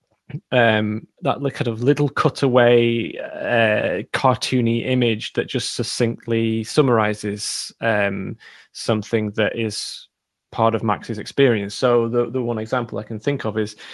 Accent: British